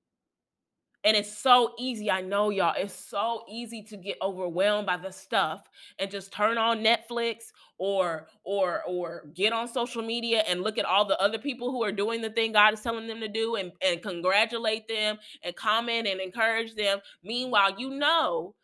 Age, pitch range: 30-49, 190-230 Hz